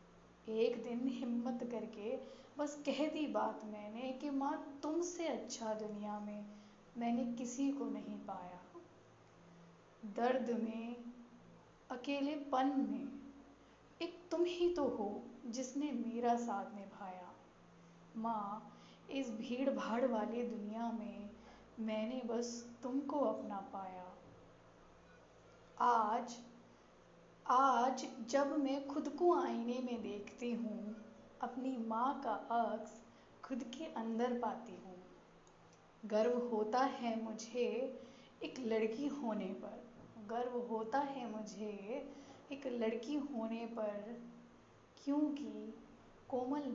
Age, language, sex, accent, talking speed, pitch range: 10-29, Hindi, female, native, 105 wpm, 220-265 Hz